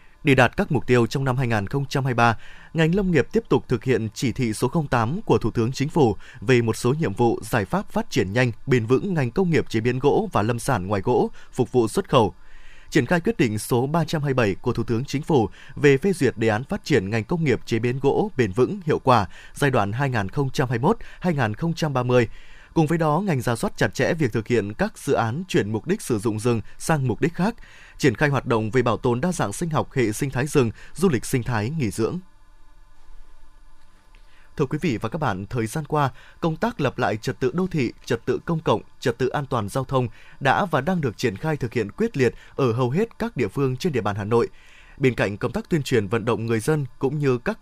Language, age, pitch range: Vietnamese, 20-39, 120-155 Hz